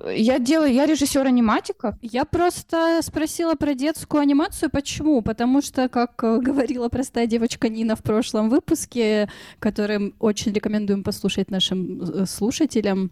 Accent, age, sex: native, 20-39, female